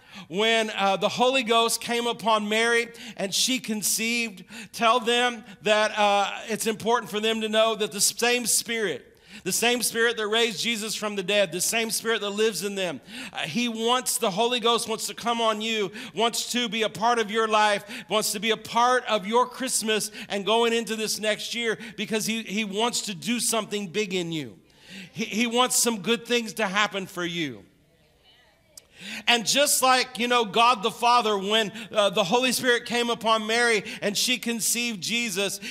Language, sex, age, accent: English, male, 40-59, American